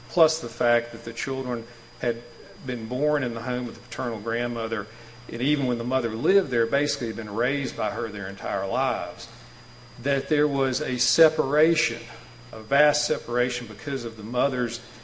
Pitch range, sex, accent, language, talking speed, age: 115-135 Hz, male, American, English, 175 wpm, 50-69